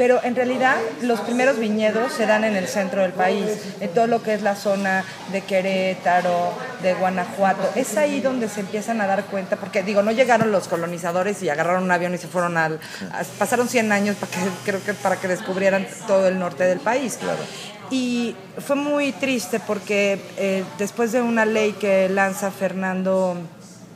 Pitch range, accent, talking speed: 185-220 Hz, Mexican, 190 wpm